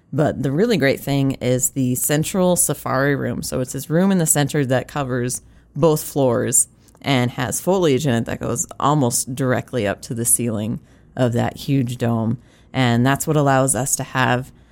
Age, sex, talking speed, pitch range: 20-39, female, 185 wpm, 125-145 Hz